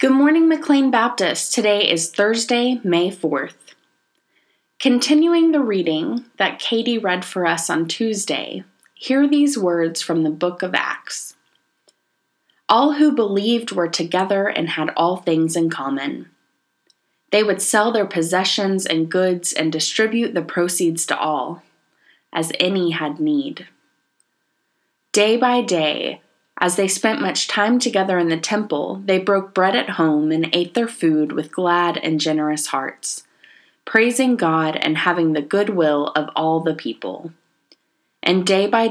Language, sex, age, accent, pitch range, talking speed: English, female, 20-39, American, 160-215 Hz, 145 wpm